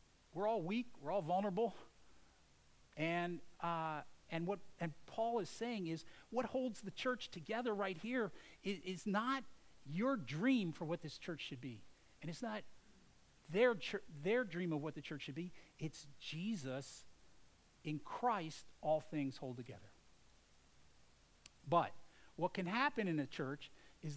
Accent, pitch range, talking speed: American, 135-200 Hz, 150 wpm